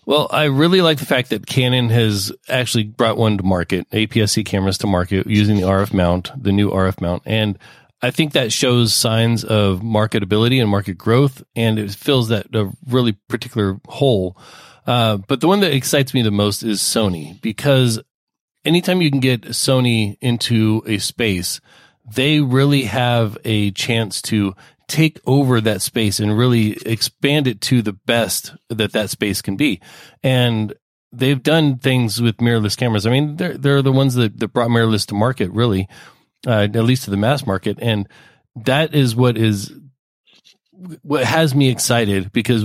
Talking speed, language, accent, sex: 175 wpm, English, American, male